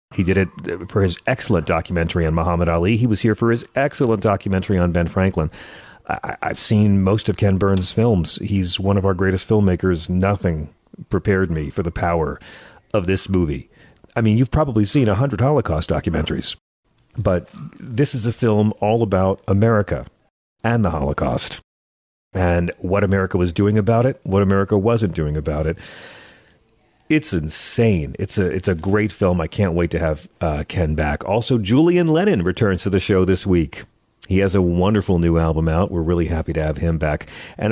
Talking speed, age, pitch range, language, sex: 185 wpm, 40-59, 85-110 Hz, English, male